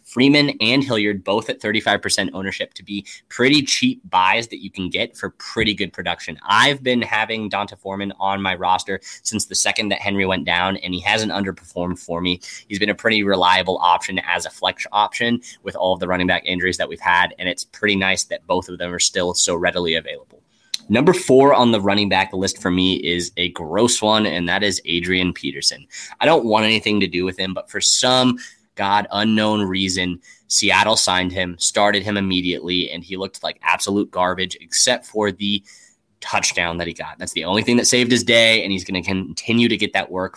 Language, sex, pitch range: English, male, 95-110 Hz